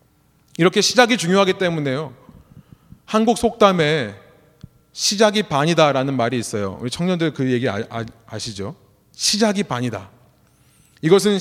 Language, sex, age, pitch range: Korean, male, 30-49, 145-215 Hz